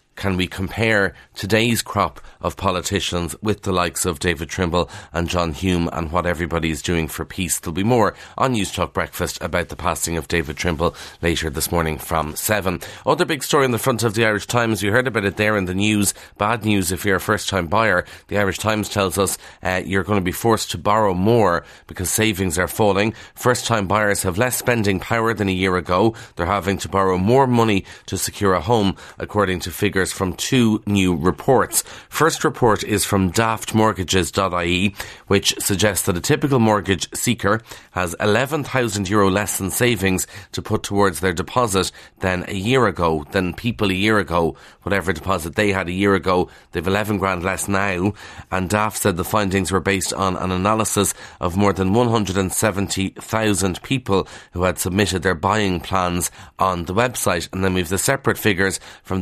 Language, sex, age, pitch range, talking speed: English, male, 30-49, 90-105 Hz, 190 wpm